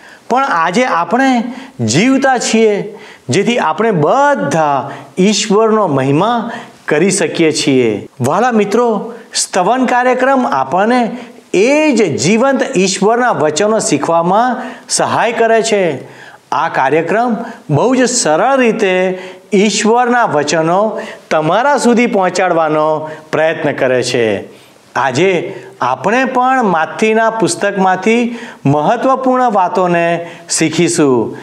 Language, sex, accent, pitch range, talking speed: Gujarati, male, native, 165-235 Hz, 95 wpm